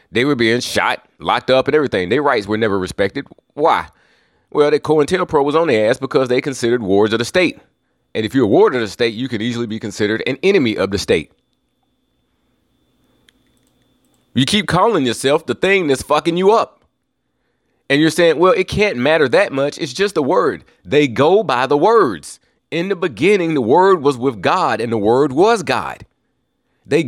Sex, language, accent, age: male, English, American, 30-49